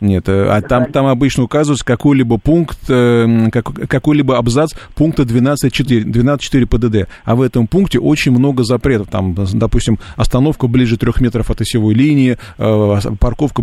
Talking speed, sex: 130 wpm, male